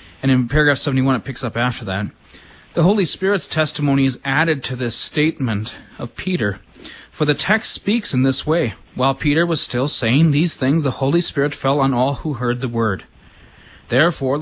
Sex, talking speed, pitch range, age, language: male, 185 wpm, 125-165 Hz, 30-49, English